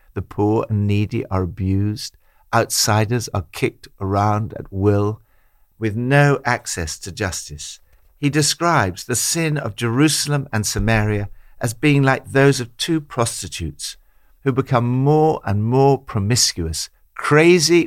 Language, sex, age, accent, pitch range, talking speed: English, male, 60-79, British, 95-125 Hz, 130 wpm